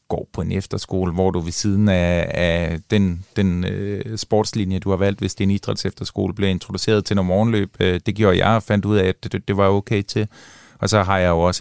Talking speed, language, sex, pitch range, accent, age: 245 wpm, Danish, male, 95-110 Hz, native, 30-49